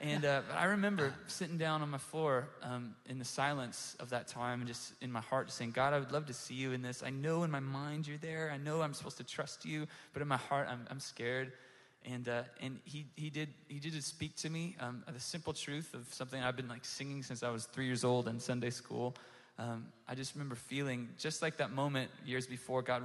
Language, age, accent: English, 20-39, American